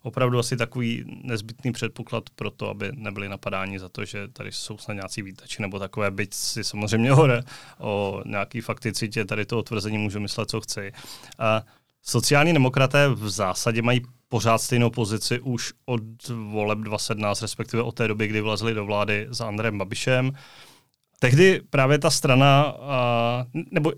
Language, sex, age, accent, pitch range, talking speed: Czech, male, 30-49, native, 115-135 Hz, 160 wpm